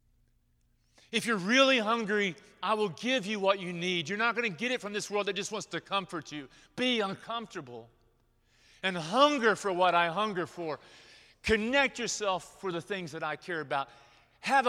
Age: 40-59